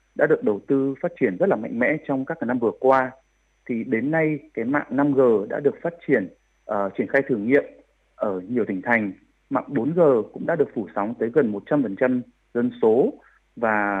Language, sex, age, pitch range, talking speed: Vietnamese, male, 20-39, 120-170 Hz, 200 wpm